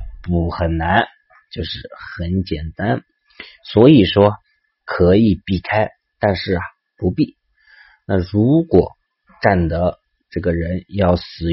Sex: male